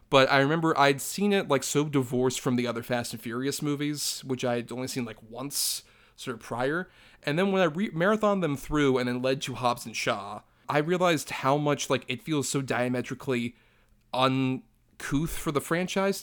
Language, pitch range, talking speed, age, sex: English, 125-150 Hz, 195 wpm, 30-49, male